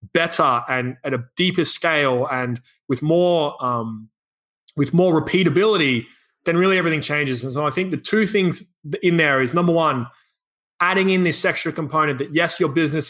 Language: English